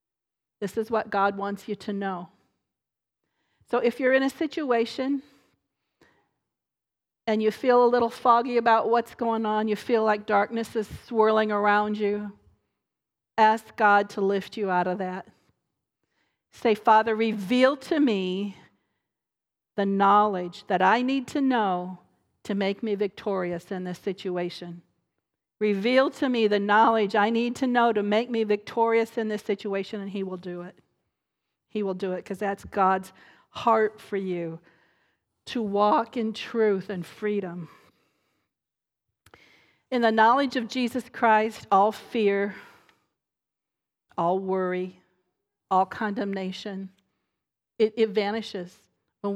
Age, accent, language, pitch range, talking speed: 50-69, American, English, 195-230 Hz, 135 wpm